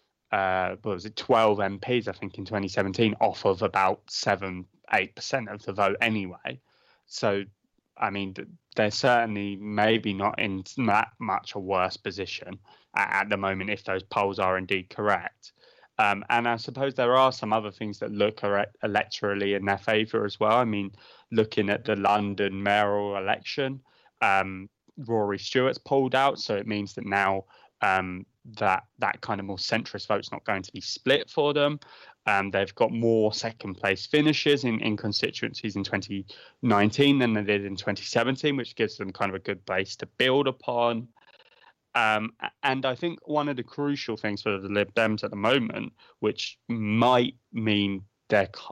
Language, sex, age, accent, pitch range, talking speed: English, male, 20-39, British, 100-125 Hz, 170 wpm